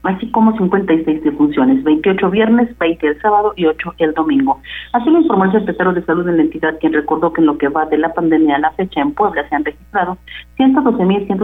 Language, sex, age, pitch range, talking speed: Spanish, female, 40-59, 155-195 Hz, 220 wpm